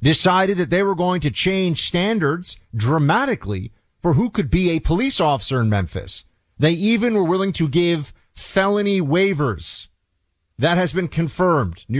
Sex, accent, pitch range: male, American, 115-175 Hz